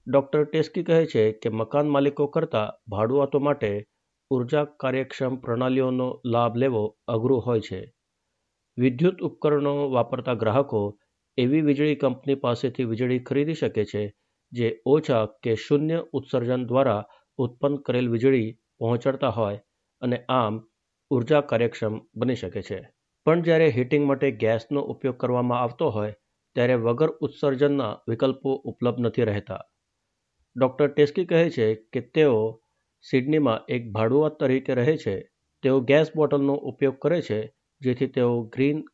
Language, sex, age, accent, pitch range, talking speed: Gujarati, male, 60-79, native, 115-140 Hz, 110 wpm